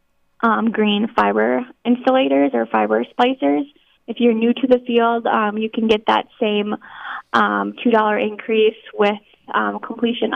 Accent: American